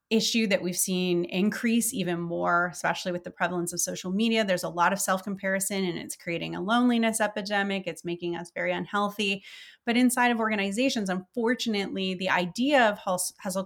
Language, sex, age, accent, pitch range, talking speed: English, female, 30-49, American, 180-200 Hz, 175 wpm